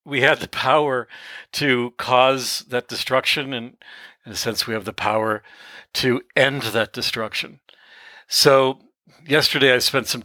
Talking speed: 145 wpm